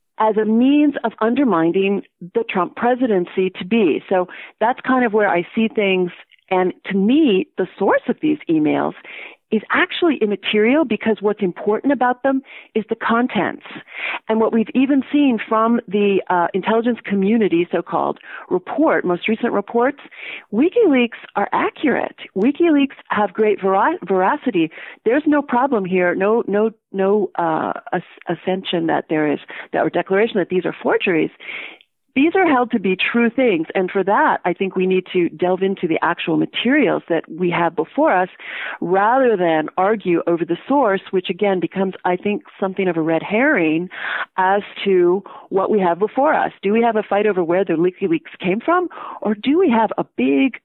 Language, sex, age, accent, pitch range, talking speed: English, female, 40-59, American, 185-245 Hz, 170 wpm